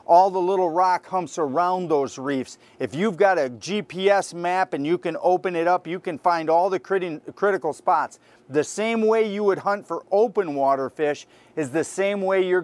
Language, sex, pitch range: English, male, 155-185 Hz